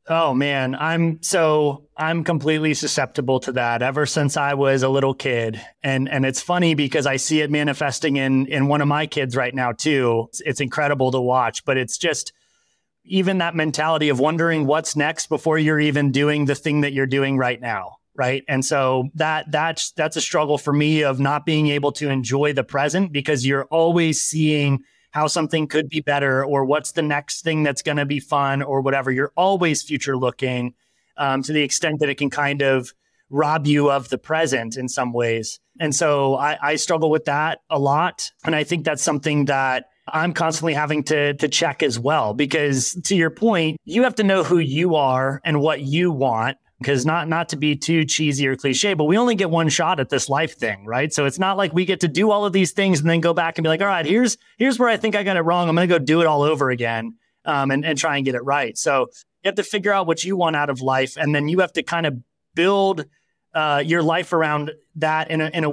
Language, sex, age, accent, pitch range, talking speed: English, male, 30-49, American, 140-165 Hz, 230 wpm